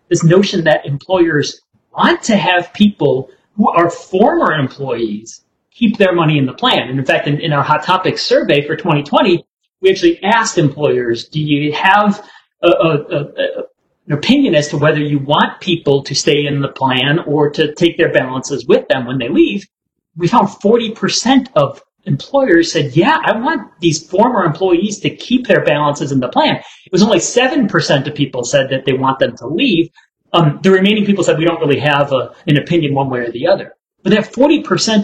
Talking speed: 190 wpm